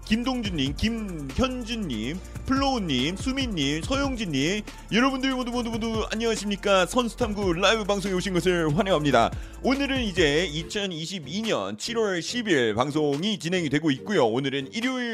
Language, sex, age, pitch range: Korean, male, 30-49, 150-230 Hz